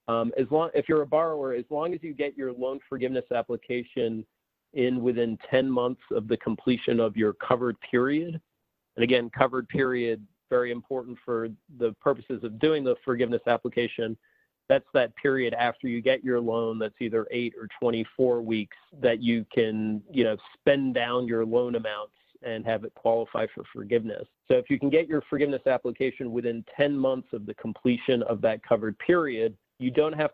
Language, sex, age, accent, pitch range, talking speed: English, male, 40-59, American, 115-135 Hz, 180 wpm